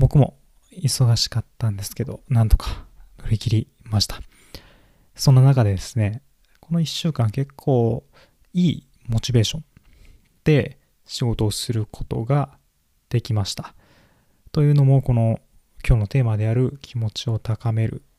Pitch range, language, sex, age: 105-130 Hz, Japanese, male, 20-39